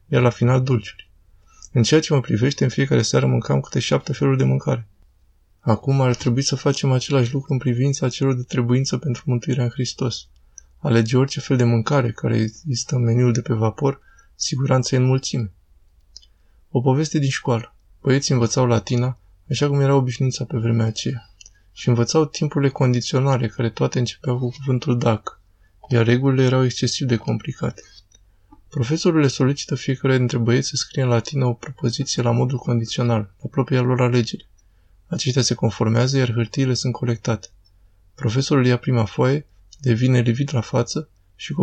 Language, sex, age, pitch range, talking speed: Romanian, male, 20-39, 110-135 Hz, 165 wpm